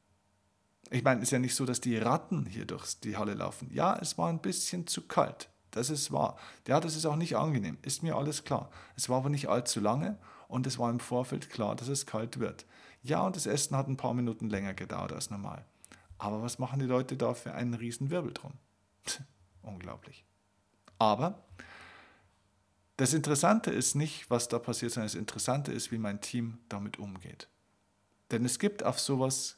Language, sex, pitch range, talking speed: German, male, 105-140 Hz, 195 wpm